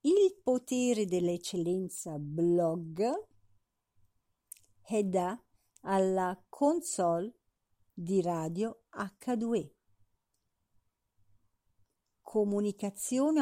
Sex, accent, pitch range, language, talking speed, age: female, native, 170-245 Hz, Italian, 55 wpm, 50-69